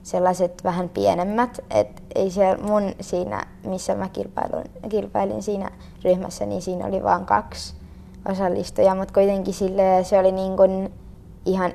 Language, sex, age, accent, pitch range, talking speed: Finnish, female, 20-39, native, 175-195 Hz, 135 wpm